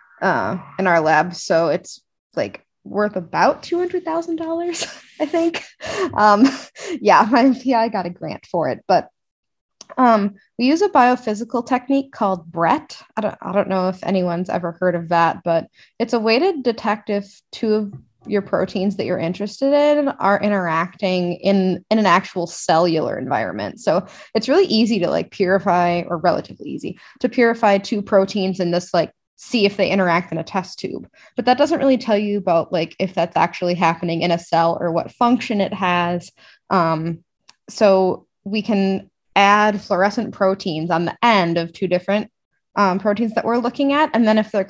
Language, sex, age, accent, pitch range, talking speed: English, female, 20-39, American, 175-230 Hz, 180 wpm